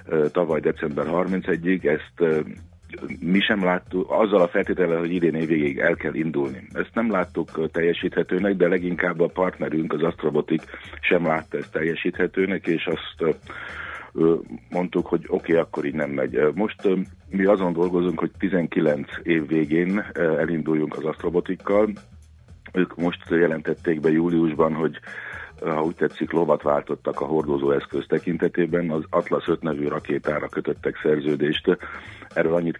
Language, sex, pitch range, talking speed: Hungarian, male, 75-90 Hz, 135 wpm